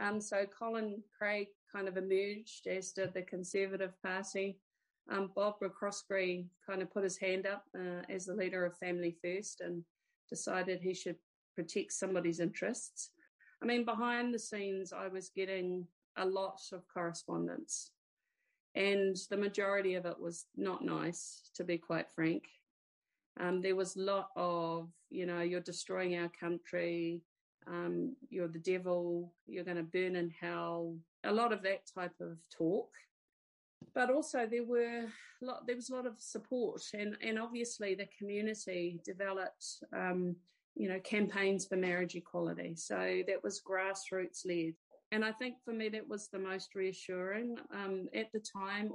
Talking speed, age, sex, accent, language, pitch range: 160 wpm, 30-49, female, Australian, English, 180-210 Hz